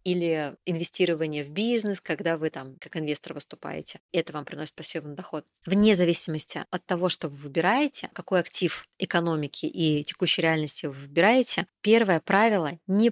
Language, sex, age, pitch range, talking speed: Russian, female, 20-39, 165-200 Hz, 150 wpm